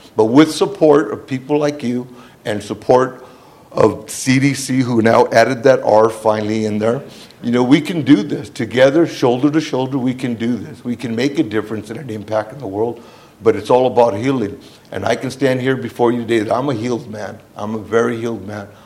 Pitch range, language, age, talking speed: 110-125 Hz, English, 50-69, 215 wpm